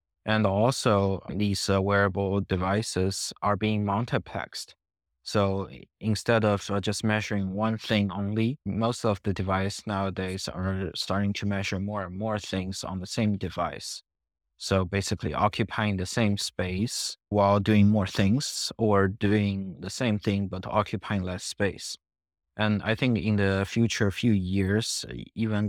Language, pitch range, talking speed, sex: English, 95-110 Hz, 145 wpm, male